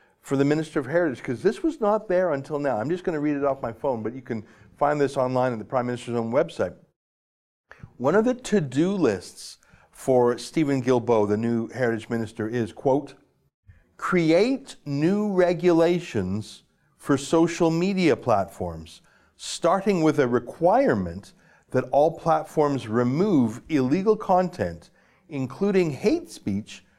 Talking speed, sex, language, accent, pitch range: 150 wpm, male, English, American, 125-165 Hz